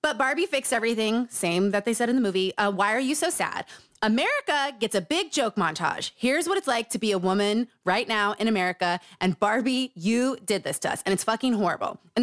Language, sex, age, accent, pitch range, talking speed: English, female, 20-39, American, 200-275 Hz, 230 wpm